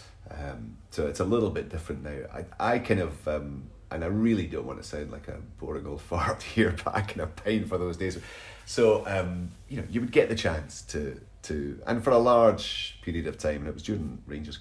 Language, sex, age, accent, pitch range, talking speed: English, male, 30-49, British, 75-100 Hz, 240 wpm